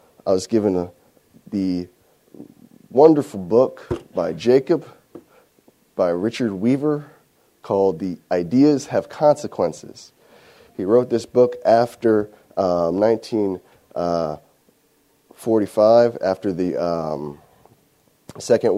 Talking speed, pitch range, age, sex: 90 wpm, 90-115 Hz, 30-49, male